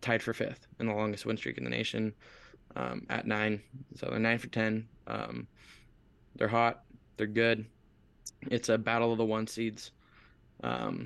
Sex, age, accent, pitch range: male, 20-39, American, 105-115 Hz